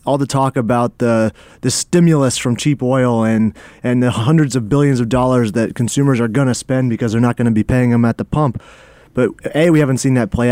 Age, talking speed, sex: 30-49, 240 wpm, male